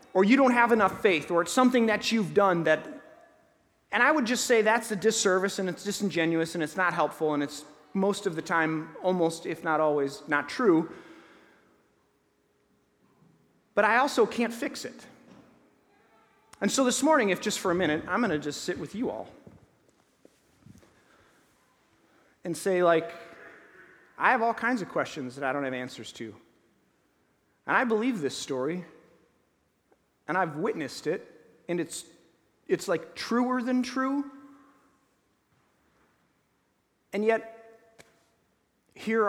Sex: male